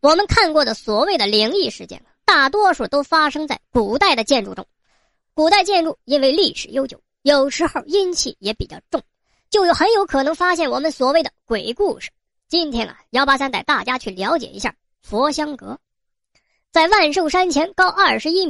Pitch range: 275-370 Hz